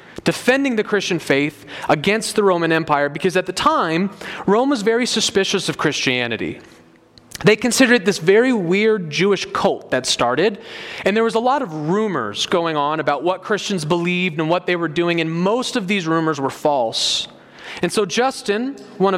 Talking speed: 180 wpm